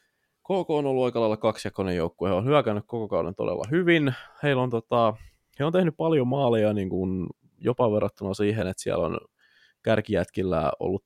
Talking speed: 145 wpm